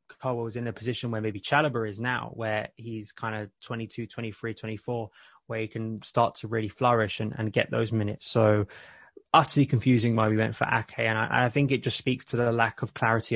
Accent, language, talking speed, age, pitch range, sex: British, English, 220 wpm, 20-39, 110-120 Hz, male